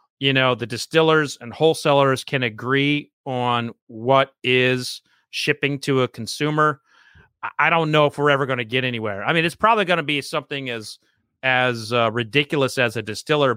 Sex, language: male, English